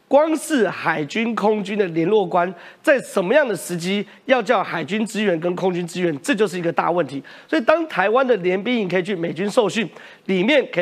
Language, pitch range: Chinese, 180-275 Hz